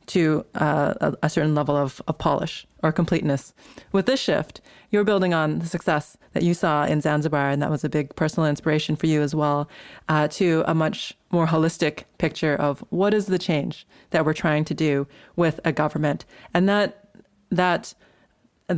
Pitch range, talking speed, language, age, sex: 155-180 Hz, 185 wpm, English, 30-49, female